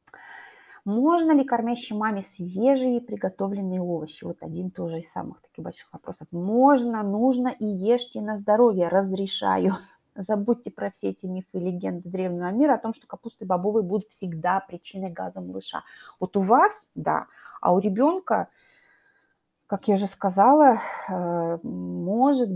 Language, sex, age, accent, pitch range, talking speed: Russian, female, 30-49, native, 185-240 Hz, 140 wpm